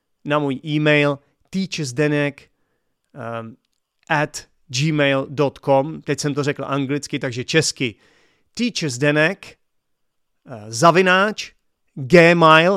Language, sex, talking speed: Czech, male, 85 wpm